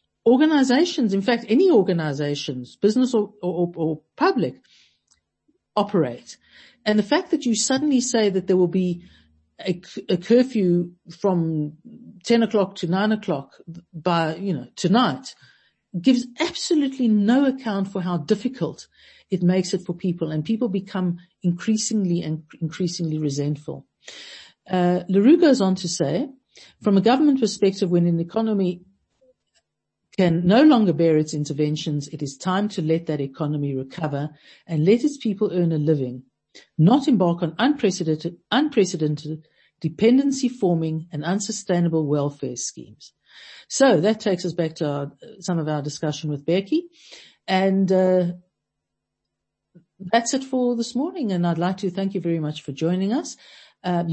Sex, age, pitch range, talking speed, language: female, 50-69, 160-220 Hz, 145 wpm, English